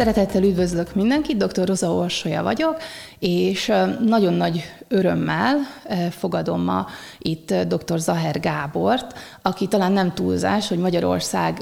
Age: 30-49